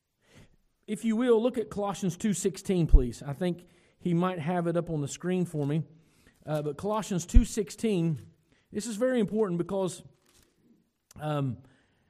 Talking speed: 150 wpm